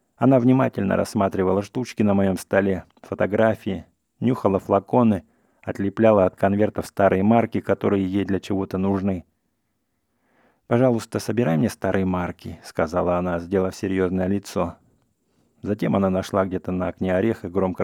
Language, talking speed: English, 130 wpm